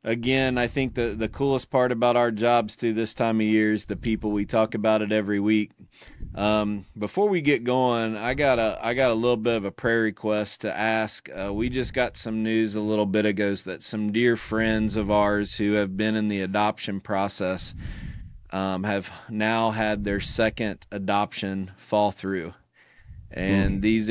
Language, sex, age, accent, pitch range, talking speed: English, male, 30-49, American, 100-110 Hz, 185 wpm